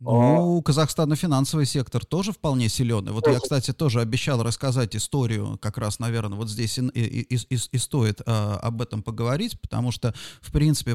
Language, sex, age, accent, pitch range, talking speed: Russian, male, 30-49, native, 120-160 Hz, 170 wpm